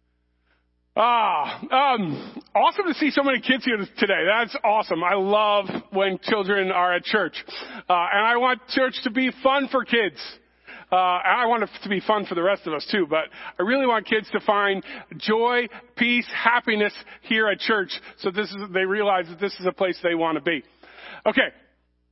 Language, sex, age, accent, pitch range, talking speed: English, male, 40-59, American, 200-265 Hz, 195 wpm